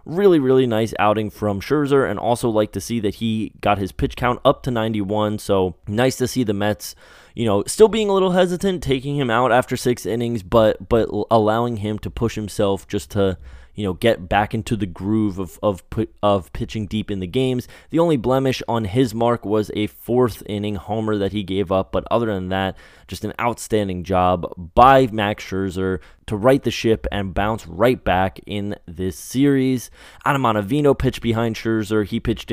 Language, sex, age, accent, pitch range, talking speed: English, male, 20-39, American, 100-125 Hz, 195 wpm